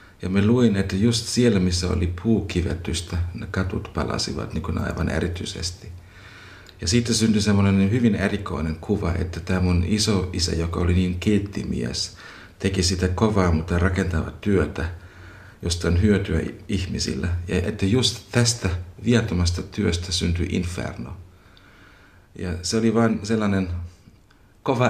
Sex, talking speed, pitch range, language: male, 135 wpm, 90-105 Hz, Finnish